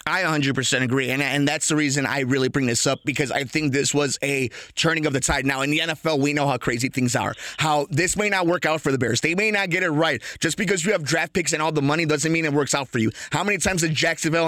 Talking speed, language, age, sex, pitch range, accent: 290 wpm, English, 30-49, male, 145-195 Hz, American